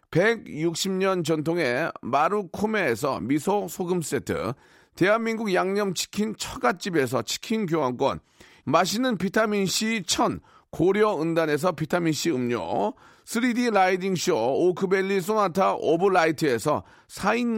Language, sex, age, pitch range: Korean, male, 40-59, 170-225 Hz